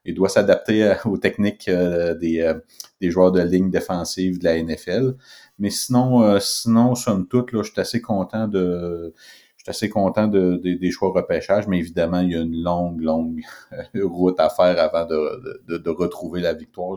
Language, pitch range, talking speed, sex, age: French, 85-95 Hz, 185 wpm, male, 30-49